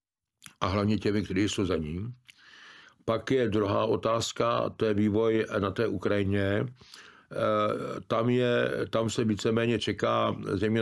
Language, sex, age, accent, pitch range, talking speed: Czech, male, 60-79, native, 100-115 Hz, 140 wpm